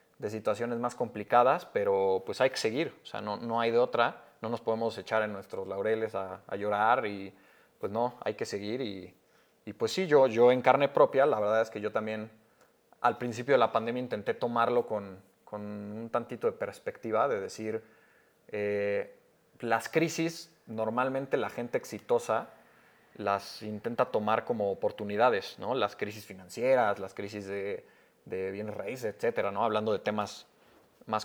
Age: 20-39